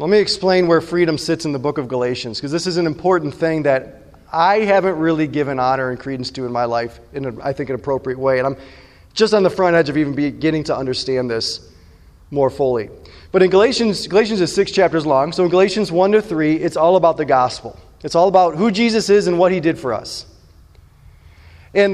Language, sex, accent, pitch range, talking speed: English, male, American, 130-185 Hz, 225 wpm